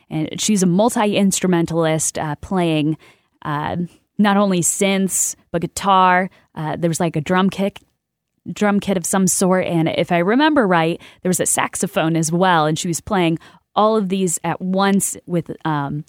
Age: 10-29